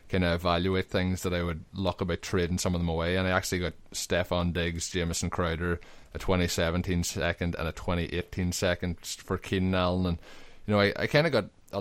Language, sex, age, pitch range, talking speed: English, male, 20-39, 85-100 Hz, 215 wpm